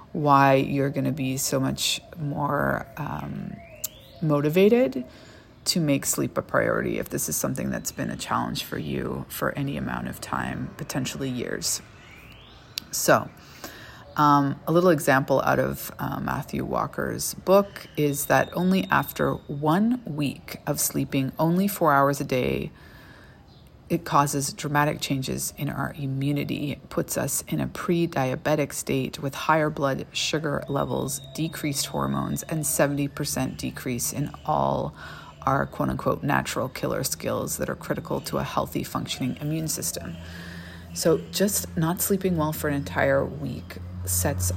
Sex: female